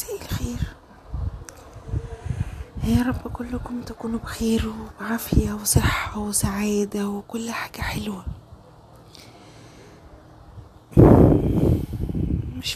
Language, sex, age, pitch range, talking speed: Arabic, female, 20-39, 185-245 Hz, 60 wpm